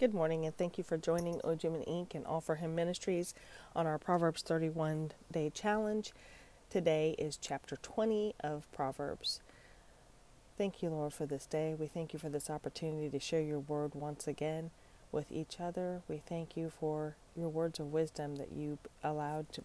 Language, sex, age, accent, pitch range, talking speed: English, female, 30-49, American, 145-165 Hz, 185 wpm